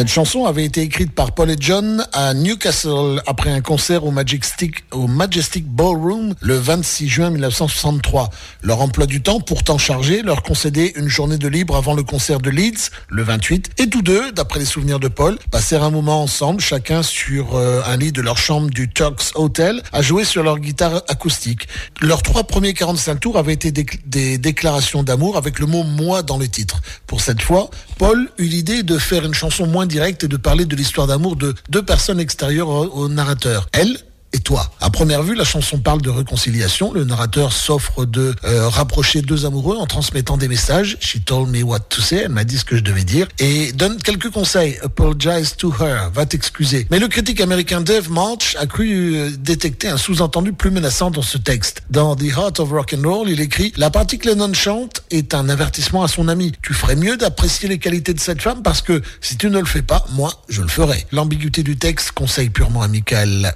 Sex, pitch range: male, 135-175 Hz